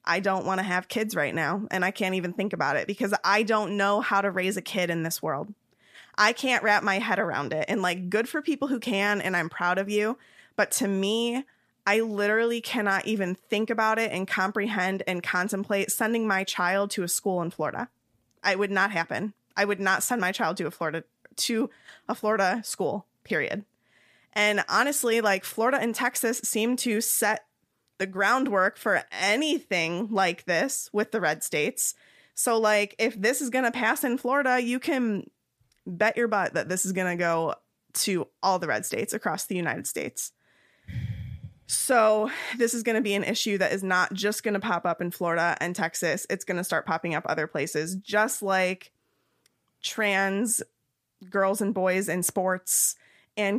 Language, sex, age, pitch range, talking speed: English, female, 20-39, 180-220 Hz, 195 wpm